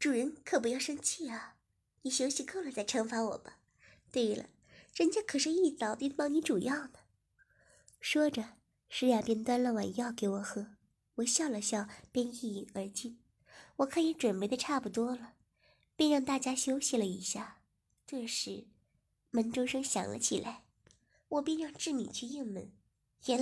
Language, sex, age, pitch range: Chinese, male, 20-39, 225-310 Hz